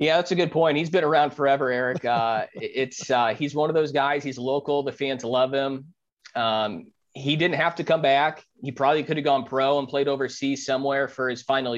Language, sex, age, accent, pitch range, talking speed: English, male, 30-49, American, 130-145 Hz, 225 wpm